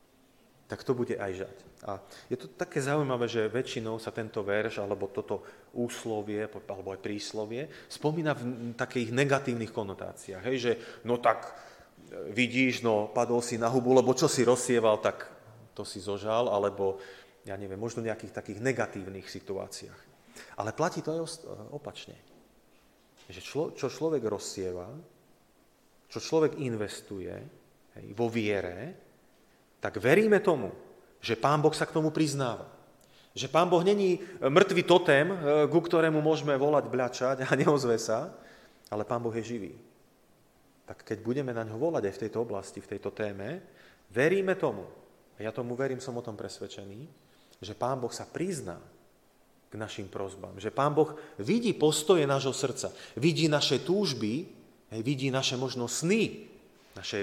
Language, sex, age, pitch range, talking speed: Slovak, male, 30-49, 110-150 Hz, 145 wpm